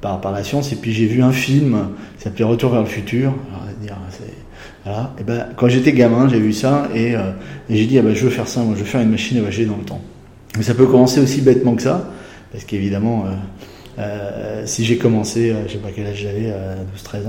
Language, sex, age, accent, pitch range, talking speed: French, male, 30-49, French, 100-120 Hz, 265 wpm